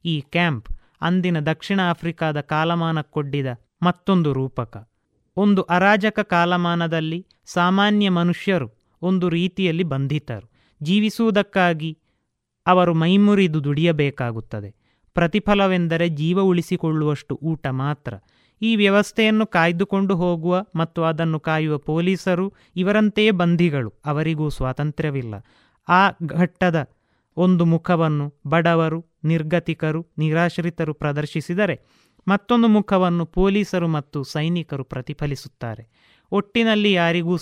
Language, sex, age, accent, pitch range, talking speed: Kannada, male, 30-49, native, 150-185 Hz, 85 wpm